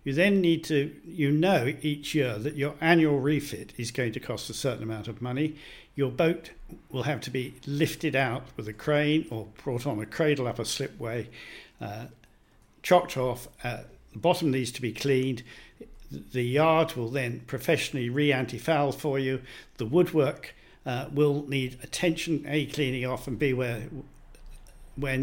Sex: male